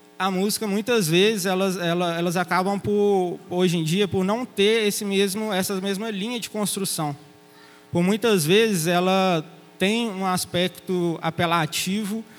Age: 20-39